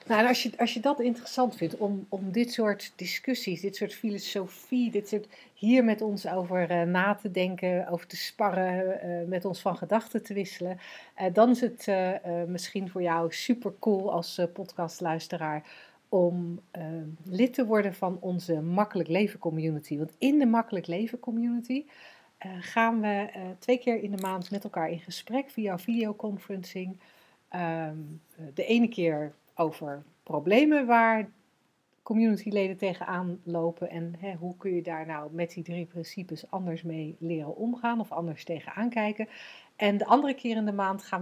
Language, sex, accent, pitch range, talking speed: Dutch, female, Dutch, 170-220 Hz, 175 wpm